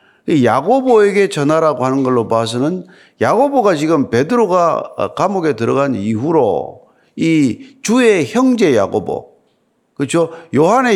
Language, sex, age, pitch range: Korean, male, 50-69, 140-235 Hz